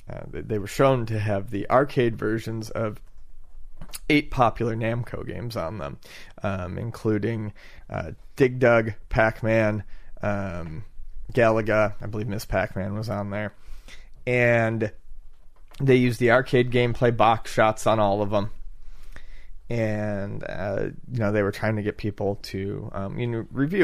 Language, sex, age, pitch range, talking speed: English, male, 30-49, 100-115 Hz, 145 wpm